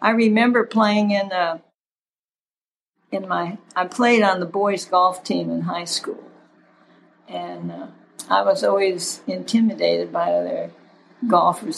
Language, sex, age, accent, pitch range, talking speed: English, female, 60-79, American, 175-245 Hz, 130 wpm